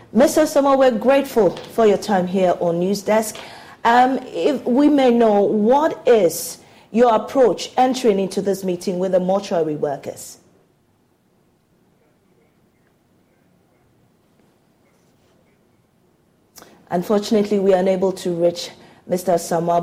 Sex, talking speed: female, 105 wpm